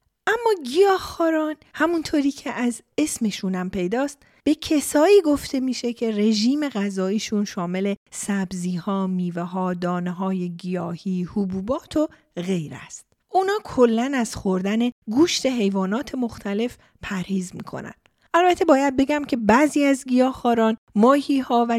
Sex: female